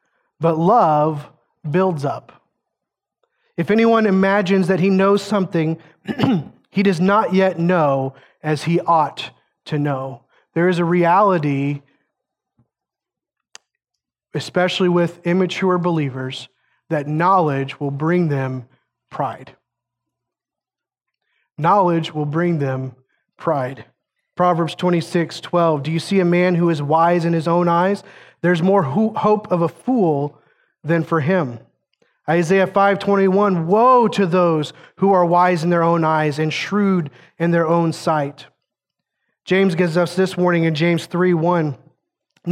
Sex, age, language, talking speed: male, 30-49, English, 125 wpm